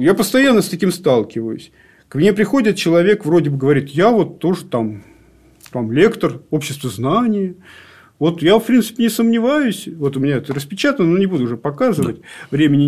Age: 40-59